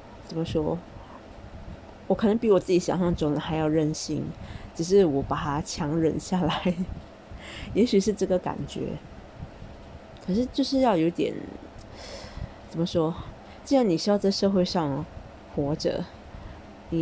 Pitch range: 150-190 Hz